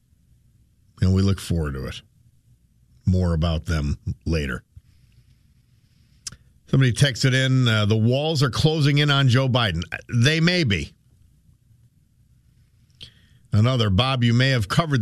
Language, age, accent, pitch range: English, 50-69, American, 115-160 Hz